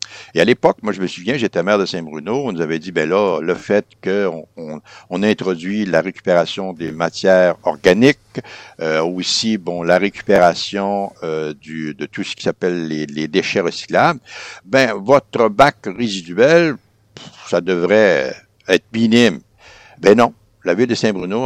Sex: male